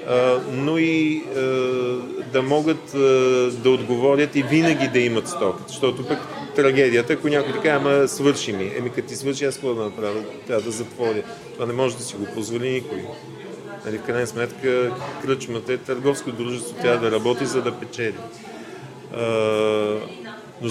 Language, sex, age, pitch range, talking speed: Bulgarian, male, 40-59, 120-155 Hz, 160 wpm